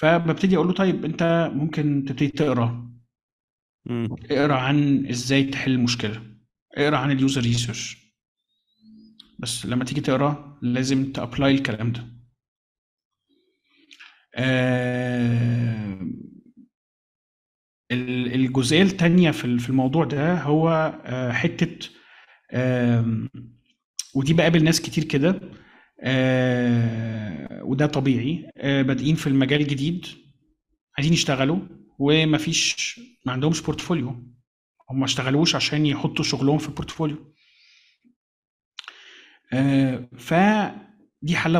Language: Arabic